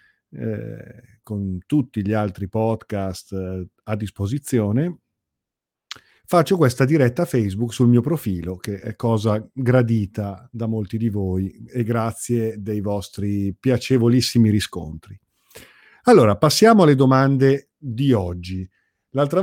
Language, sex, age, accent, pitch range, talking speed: Italian, male, 50-69, native, 105-130 Hz, 115 wpm